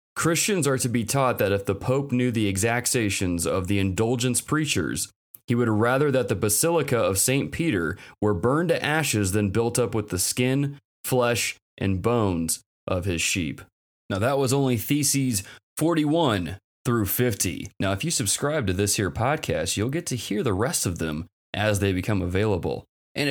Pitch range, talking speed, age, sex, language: 100-135 Hz, 180 wpm, 20-39, male, English